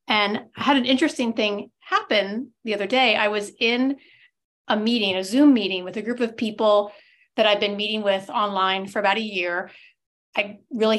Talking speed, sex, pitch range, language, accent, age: 190 wpm, female, 205-295 Hz, English, American, 30-49